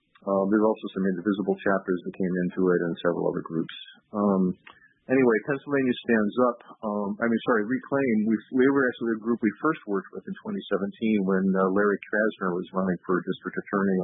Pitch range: 90-105 Hz